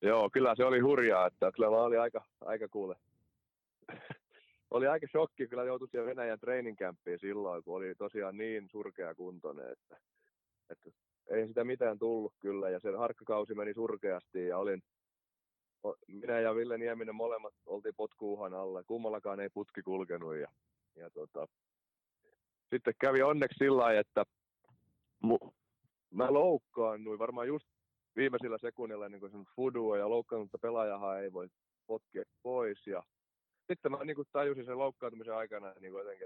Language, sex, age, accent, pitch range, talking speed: Finnish, male, 30-49, native, 105-145 Hz, 145 wpm